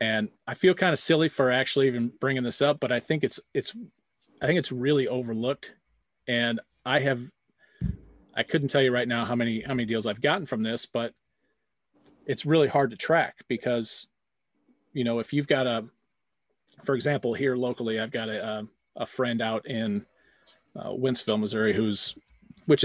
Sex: male